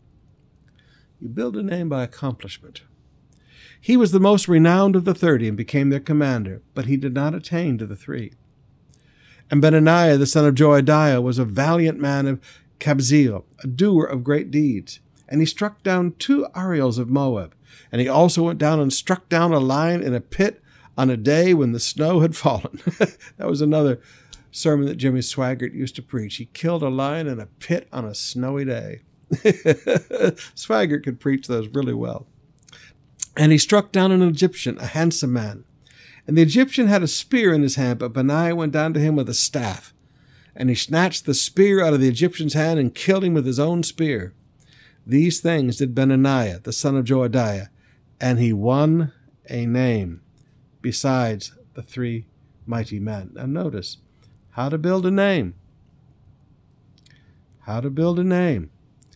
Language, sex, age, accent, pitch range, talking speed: English, male, 60-79, American, 125-160 Hz, 175 wpm